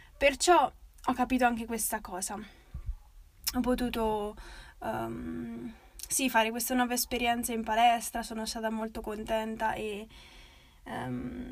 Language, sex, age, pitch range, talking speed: Italian, female, 10-29, 220-250 Hz, 115 wpm